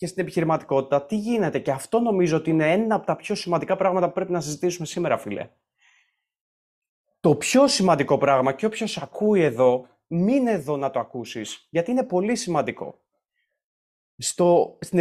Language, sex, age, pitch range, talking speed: Greek, male, 30-49, 140-190 Hz, 170 wpm